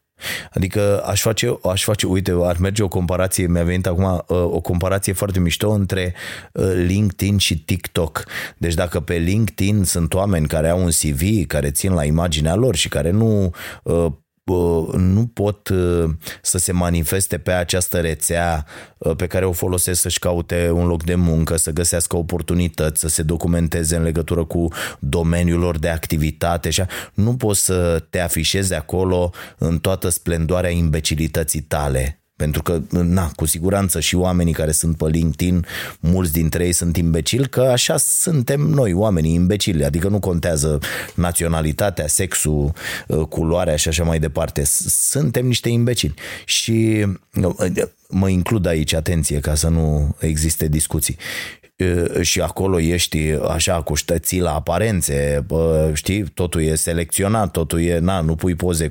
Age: 20-39